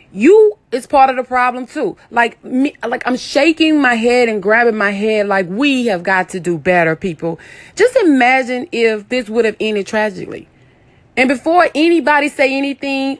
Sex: female